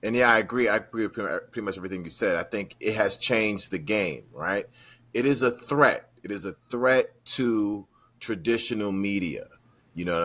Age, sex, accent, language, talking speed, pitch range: 30-49, male, American, English, 200 wpm, 95-120 Hz